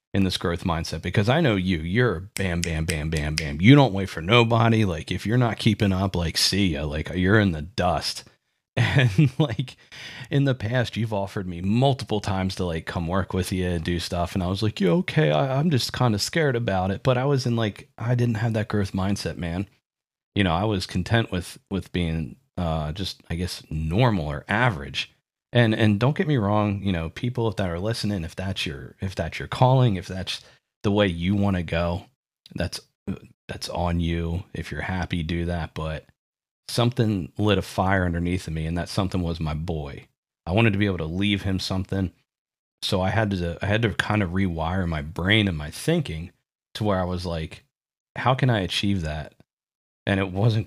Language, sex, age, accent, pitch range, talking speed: English, male, 30-49, American, 85-115 Hz, 210 wpm